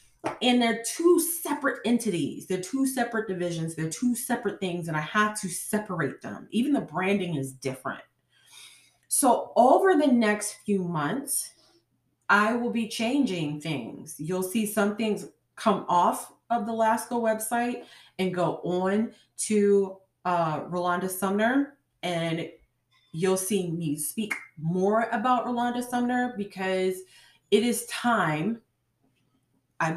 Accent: American